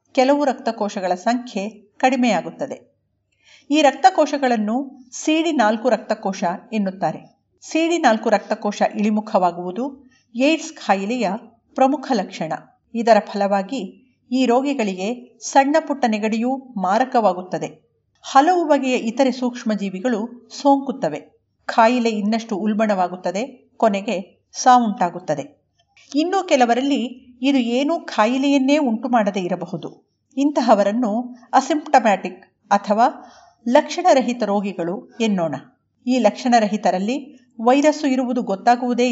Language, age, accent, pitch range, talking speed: Kannada, 50-69, native, 205-265 Hz, 85 wpm